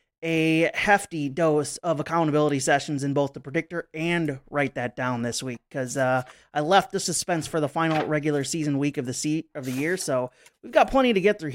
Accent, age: American, 30-49